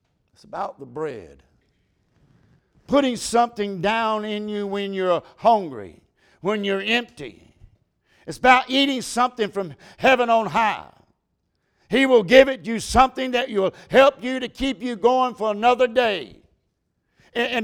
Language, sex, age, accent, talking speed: English, male, 60-79, American, 140 wpm